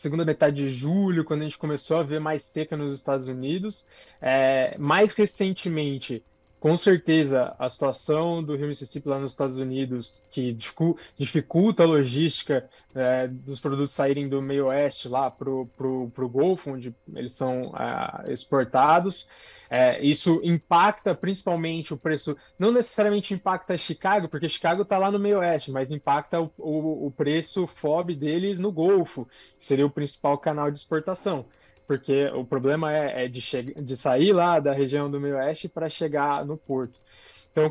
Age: 20-39